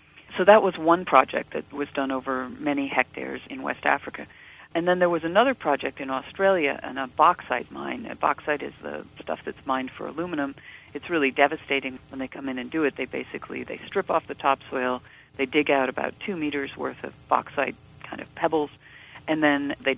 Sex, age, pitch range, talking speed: female, 40-59, 135-170 Hz, 200 wpm